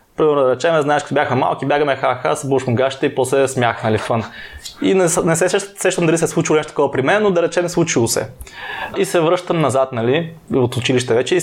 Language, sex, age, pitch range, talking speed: Bulgarian, male, 20-39, 130-170 Hz, 220 wpm